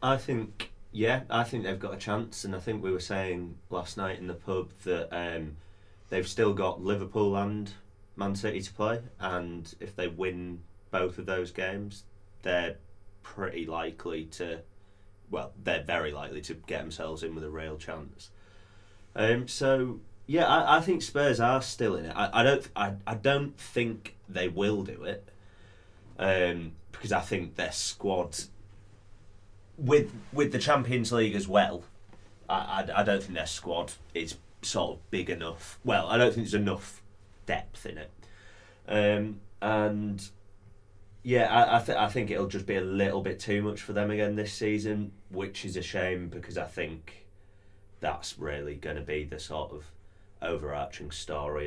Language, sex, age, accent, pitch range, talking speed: English, male, 30-49, British, 90-105 Hz, 175 wpm